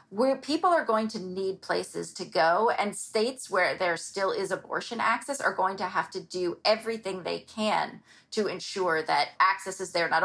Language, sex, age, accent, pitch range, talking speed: English, female, 30-49, American, 190-255 Hz, 195 wpm